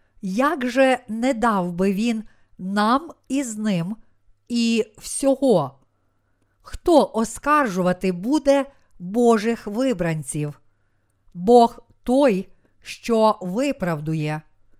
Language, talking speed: Ukrainian, 80 wpm